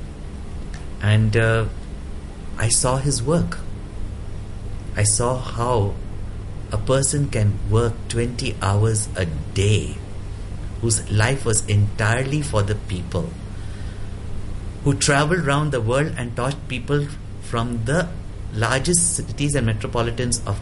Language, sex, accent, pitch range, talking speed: English, male, Indian, 100-125 Hz, 115 wpm